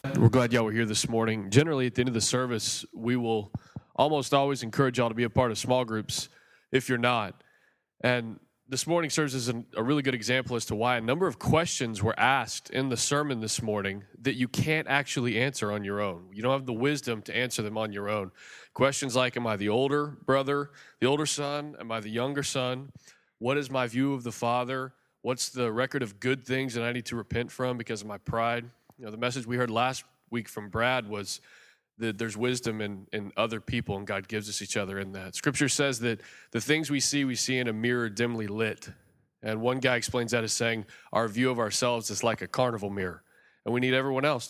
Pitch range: 110-130 Hz